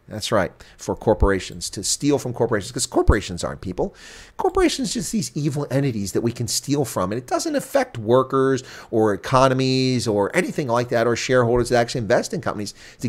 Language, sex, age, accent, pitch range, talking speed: English, male, 40-59, American, 100-135 Hz, 195 wpm